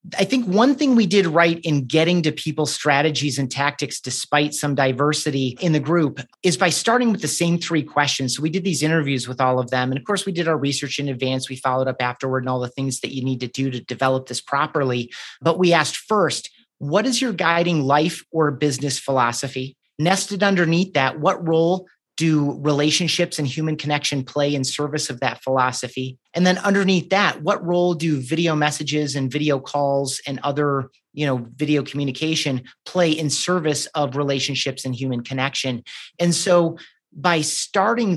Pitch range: 135-170 Hz